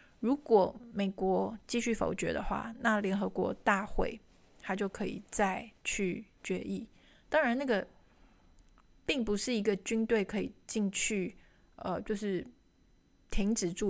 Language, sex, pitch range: Chinese, female, 195-230 Hz